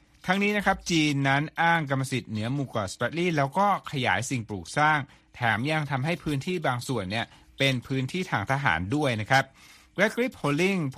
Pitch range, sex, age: 115-145 Hz, male, 60-79